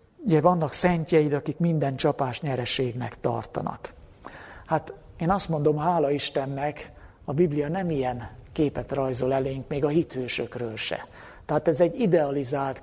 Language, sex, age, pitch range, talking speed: Hungarian, male, 60-79, 130-160 Hz, 135 wpm